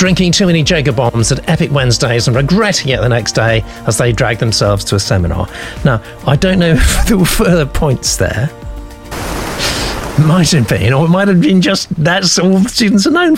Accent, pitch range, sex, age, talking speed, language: British, 105-150 Hz, male, 50-69, 210 wpm, English